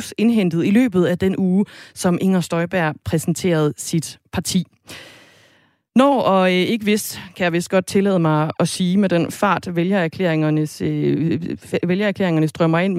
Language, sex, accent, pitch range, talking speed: Danish, female, native, 160-205 Hz, 140 wpm